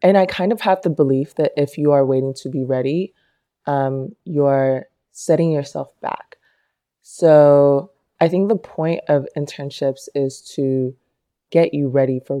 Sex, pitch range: female, 135-160 Hz